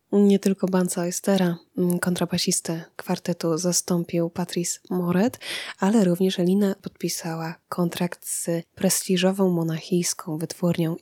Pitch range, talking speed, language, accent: 170-190 Hz, 100 wpm, Polish, native